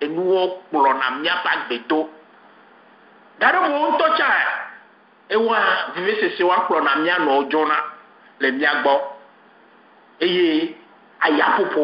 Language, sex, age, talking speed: English, male, 50-69, 50 wpm